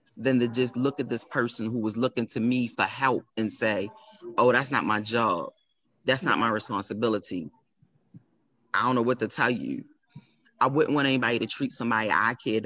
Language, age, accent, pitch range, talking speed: English, 30-49, American, 115-145 Hz, 195 wpm